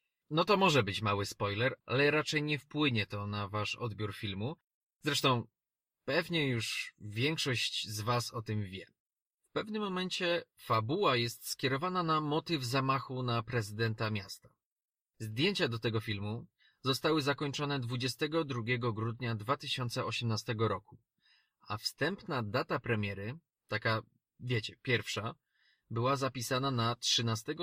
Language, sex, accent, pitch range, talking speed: Polish, male, native, 110-135 Hz, 125 wpm